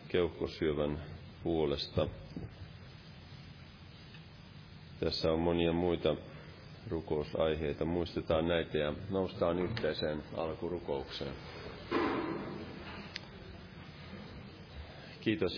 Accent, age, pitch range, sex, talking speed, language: native, 30-49, 85-115 Hz, male, 55 wpm, Finnish